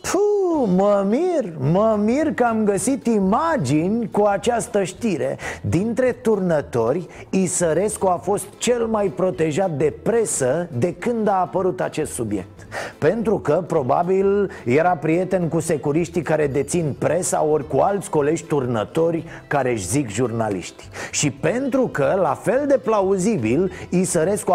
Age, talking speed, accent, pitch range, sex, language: 30-49, 130 wpm, native, 140-195 Hz, male, Romanian